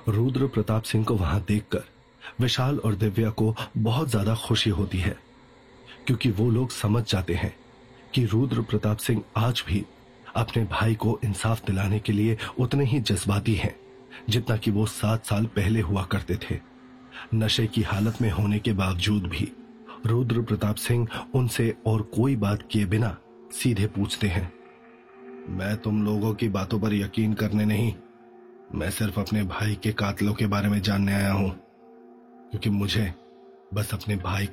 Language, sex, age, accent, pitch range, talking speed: Hindi, male, 30-49, native, 105-120 Hz, 160 wpm